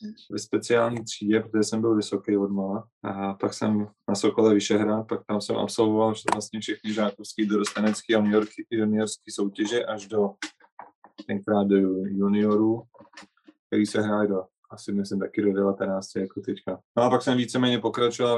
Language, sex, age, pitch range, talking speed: Slovak, male, 20-39, 100-115 Hz, 165 wpm